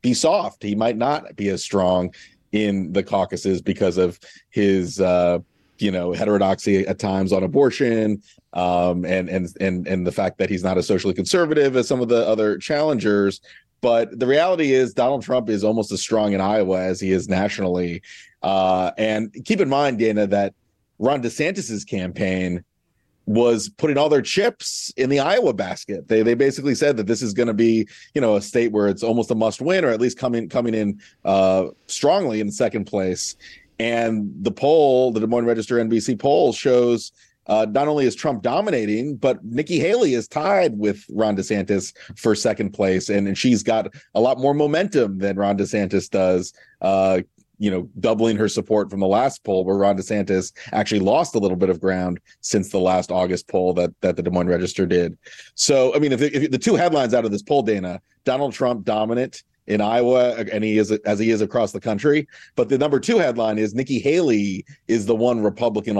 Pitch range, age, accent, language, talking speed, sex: 95-120 Hz, 30-49, American, English, 195 wpm, male